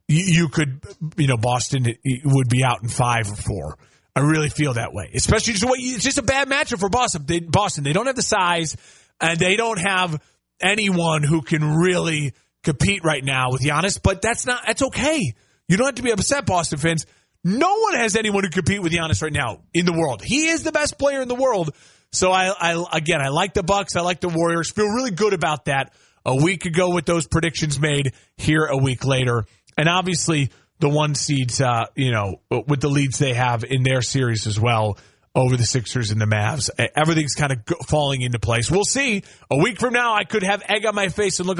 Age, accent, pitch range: 30-49, American, 135-210 Hz